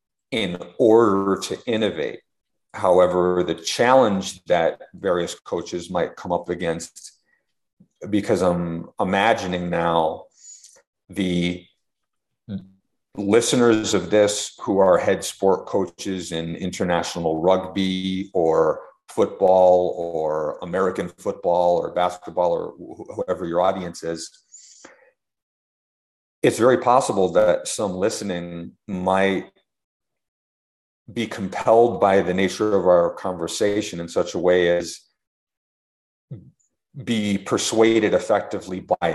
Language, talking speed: French, 100 wpm